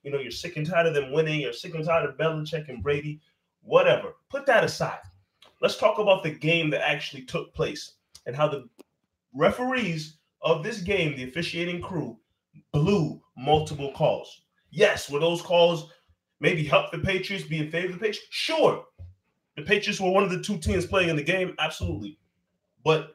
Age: 20-39